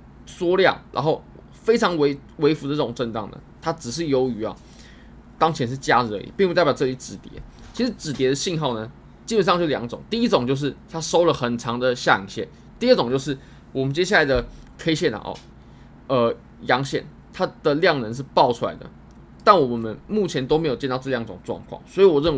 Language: Chinese